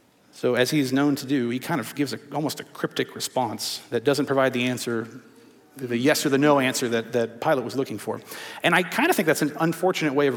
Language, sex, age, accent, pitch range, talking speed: English, male, 40-59, American, 130-155 Hz, 235 wpm